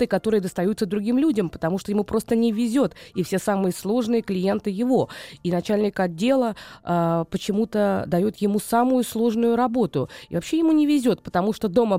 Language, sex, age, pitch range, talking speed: Russian, female, 20-39, 175-230 Hz, 170 wpm